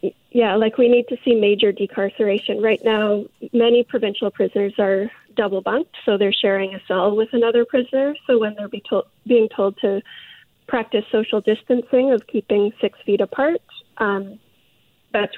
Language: English